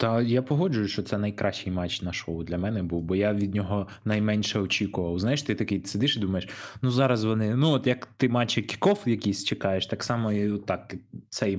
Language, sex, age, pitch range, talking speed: Ukrainian, male, 20-39, 95-120 Hz, 200 wpm